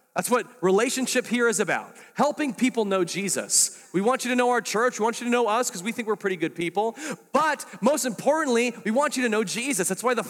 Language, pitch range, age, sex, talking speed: English, 165-235 Hz, 30-49, male, 245 wpm